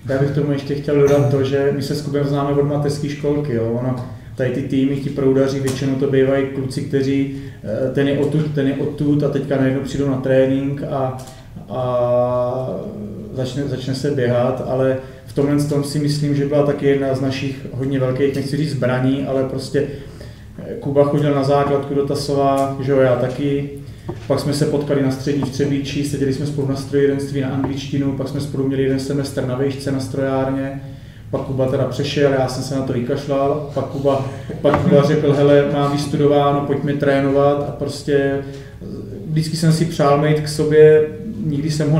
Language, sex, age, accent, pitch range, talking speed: Czech, male, 30-49, native, 135-145 Hz, 190 wpm